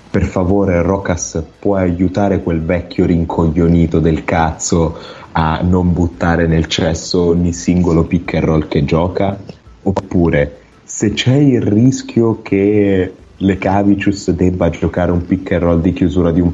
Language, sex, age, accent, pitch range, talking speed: Italian, male, 30-49, native, 80-95 Hz, 140 wpm